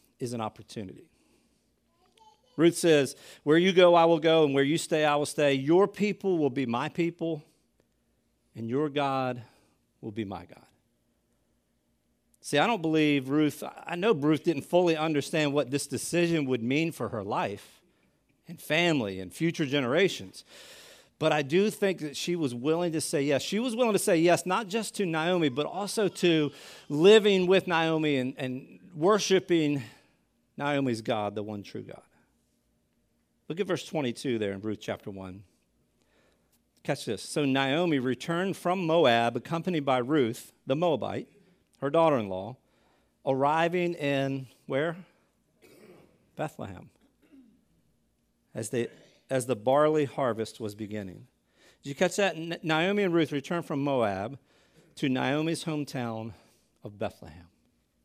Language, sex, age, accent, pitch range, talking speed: English, male, 50-69, American, 125-170 Hz, 145 wpm